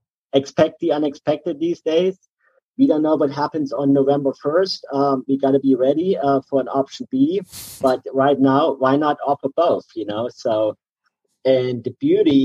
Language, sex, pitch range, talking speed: English, male, 115-145 Hz, 175 wpm